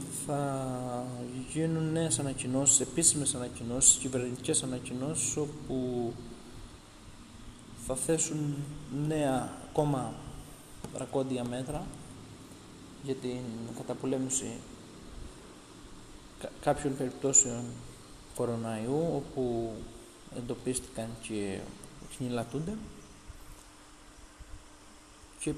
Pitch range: 120-150 Hz